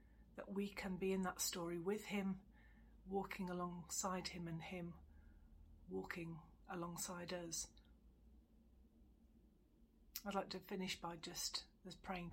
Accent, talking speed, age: British, 110 wpm, 40-59